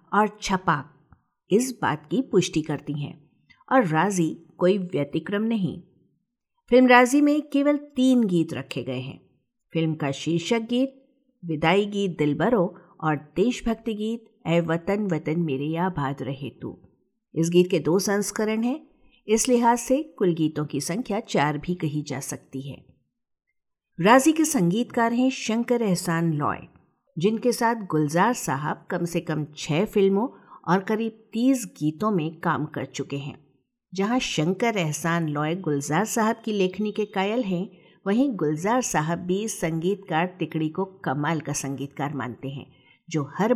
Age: 50-69